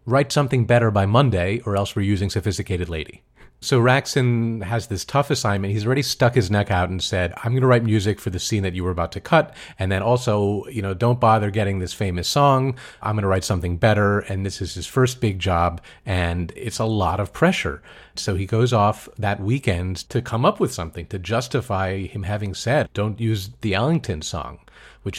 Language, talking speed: English, 215 wpm